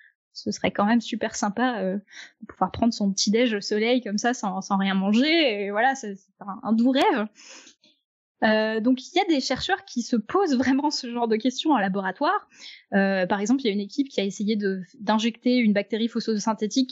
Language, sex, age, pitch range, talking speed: French, female, 10-29, 210-260 Hz, 220 wpm